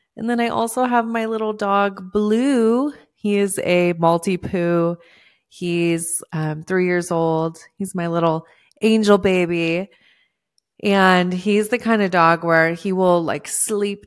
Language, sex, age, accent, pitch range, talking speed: English, female, 30-49, American, 165-210 Hz, 150 wpm